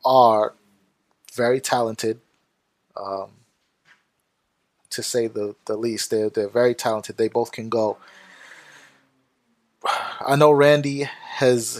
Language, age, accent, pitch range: English, 20-39, American, 110-125 Hz